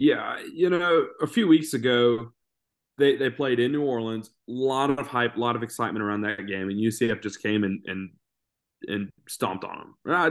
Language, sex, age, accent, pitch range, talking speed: English, male, 20-39, American, 100-120 Hz, 205 wpm